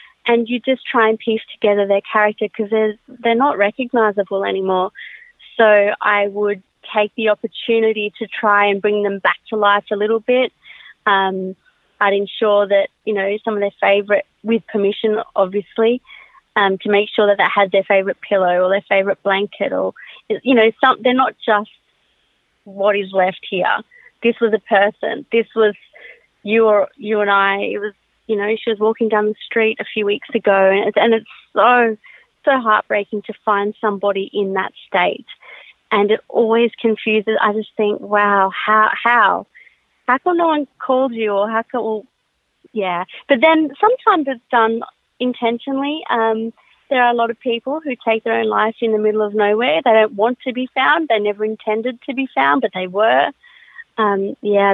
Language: English